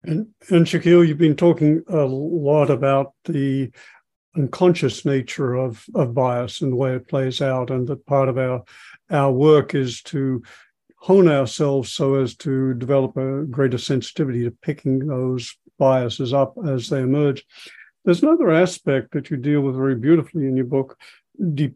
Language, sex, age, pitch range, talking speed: English, male, 50-69, 135-165 Hz, 165 wpm